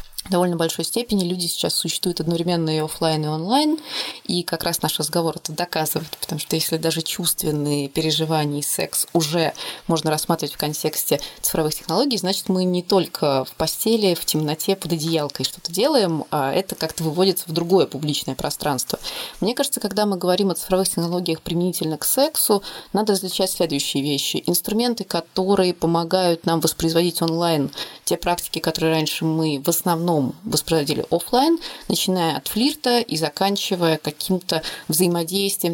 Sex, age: female, 20-39